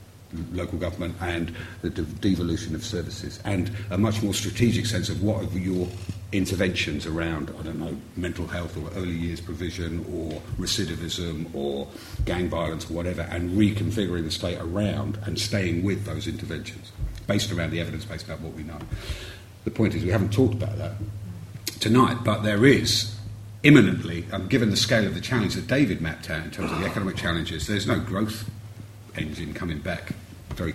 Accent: British